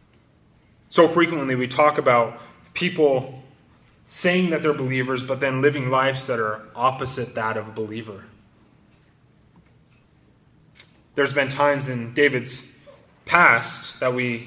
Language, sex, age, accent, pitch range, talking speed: English, male, 20-39, American, 115-140 Hz, 120 wpm